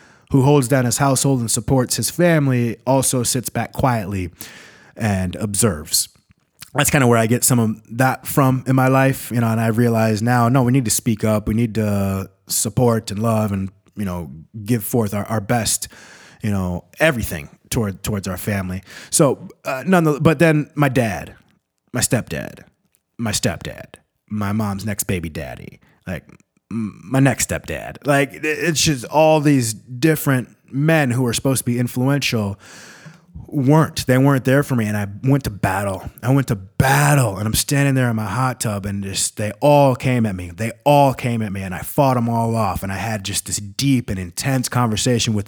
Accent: American